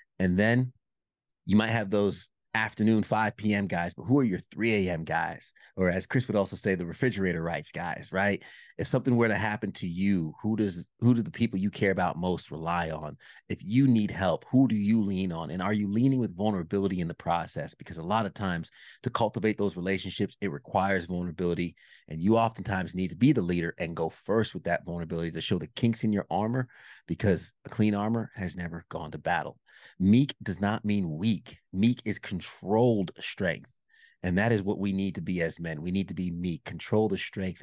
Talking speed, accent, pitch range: 210 wpm, American, 85-105 Hz